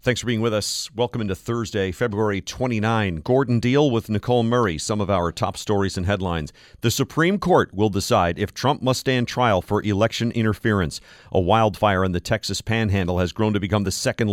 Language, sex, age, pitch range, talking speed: English, male, 40-59, 95-125 Hz, 195 wpm